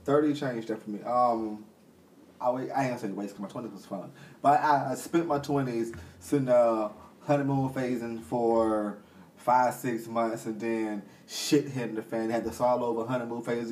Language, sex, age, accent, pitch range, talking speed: English, male, 20-39, American, 110-145 Hz, 185 wpm